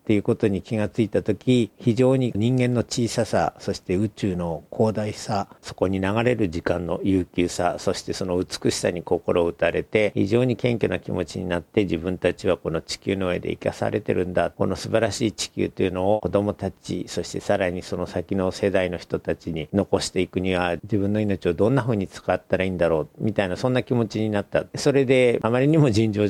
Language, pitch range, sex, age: Japanese, 90-120 Hz, male, 50-69